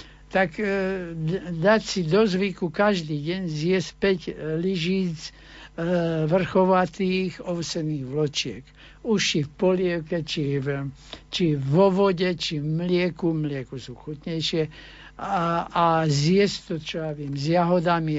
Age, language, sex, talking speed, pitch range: 60-79, Slovak, male, 115 wpm, 155-185 Hz